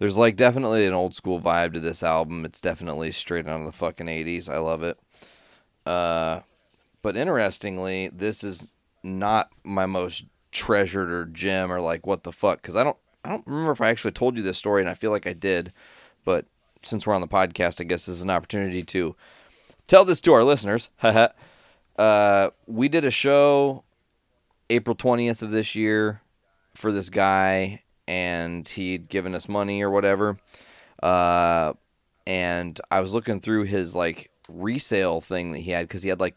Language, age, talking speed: English, 30-49, 185 wpm